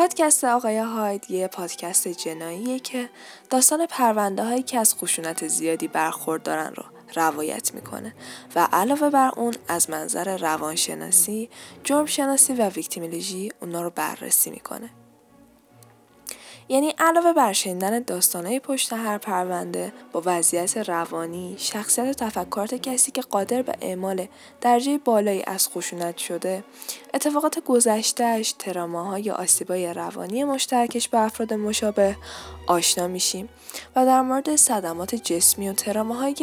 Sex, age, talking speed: female, 10-29, 120 wpm